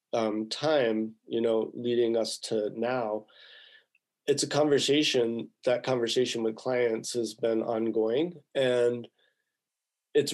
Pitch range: 115-130 Hz